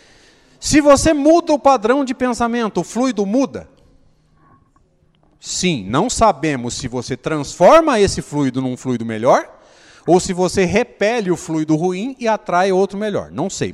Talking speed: 150 wpm